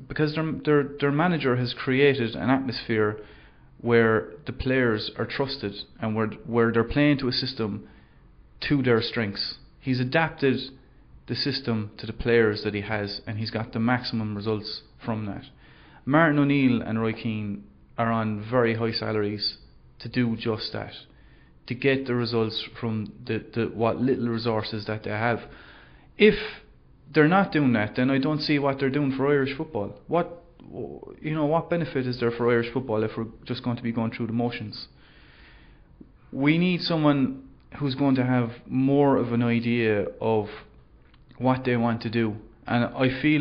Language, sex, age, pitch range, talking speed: English, male, 30-49, 110-135 Hz, 175 wpm